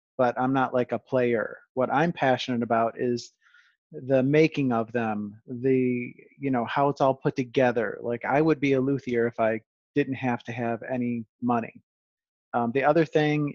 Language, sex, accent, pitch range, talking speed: English, male, American, 115-135 Hz, 180 wpm